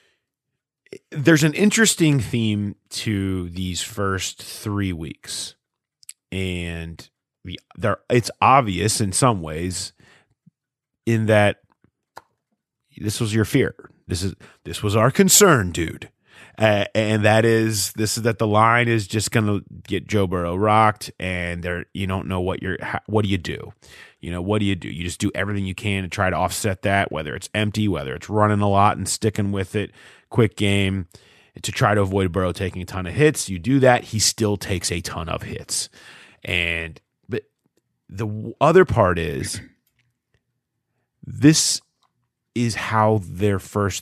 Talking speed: 160 wpm